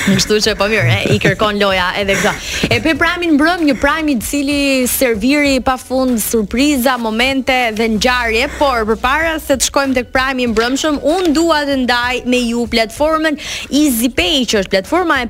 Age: 20-39